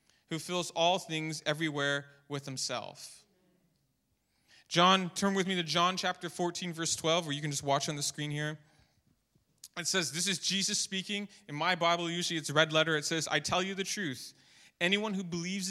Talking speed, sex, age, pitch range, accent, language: 190 wpm, male, 20-39, 150-200 Hz, American, English